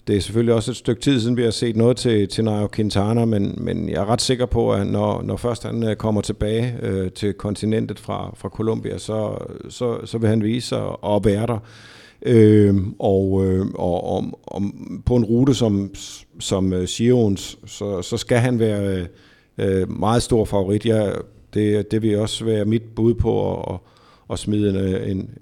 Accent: native